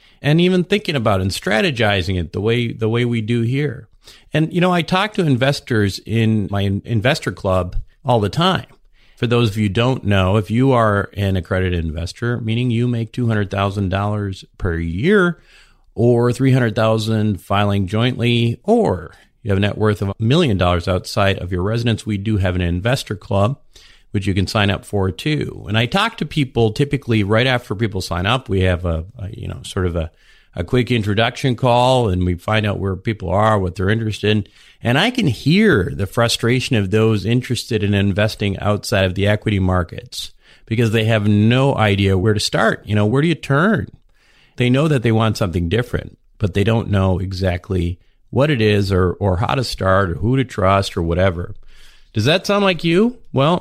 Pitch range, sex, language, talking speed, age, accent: 100-120 Hz, male, English, 200 wpm, 40-59, American